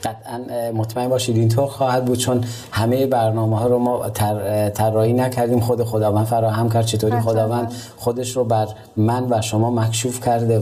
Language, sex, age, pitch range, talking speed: Persian, male, 30-49, 105-120 Hz, 165 wpm